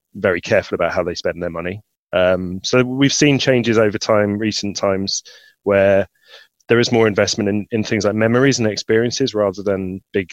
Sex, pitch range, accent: male, 95-115 Hz, British